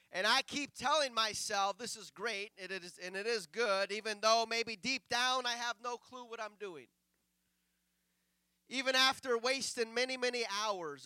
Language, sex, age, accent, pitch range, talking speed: English, male, 30-49, American, 160-235 Hz, 170 wpm